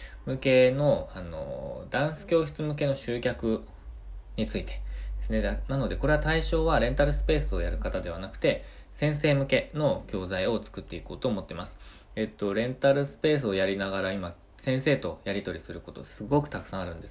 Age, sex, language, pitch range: 20-39, male, Japanese, 90-130 Hz